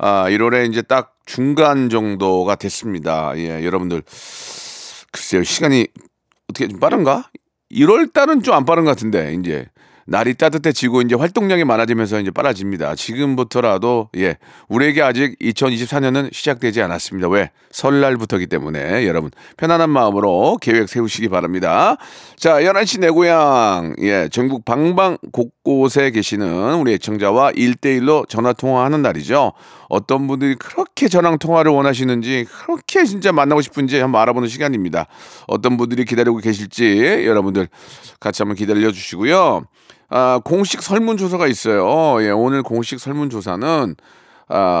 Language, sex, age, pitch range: Korean, male, 40-59, 110-160 Hz